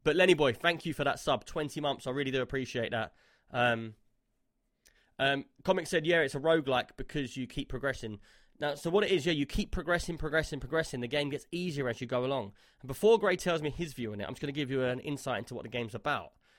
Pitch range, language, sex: 120-150 Hz, English, male